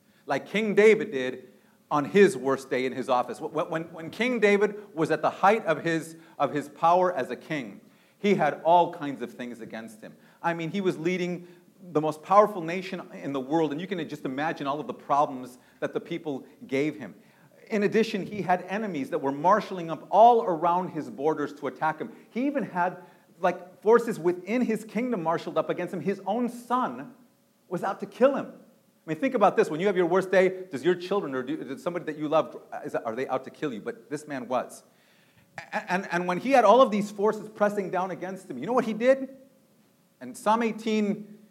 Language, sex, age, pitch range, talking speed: English, male, 40-59, 155-210 Hz, 215 wpm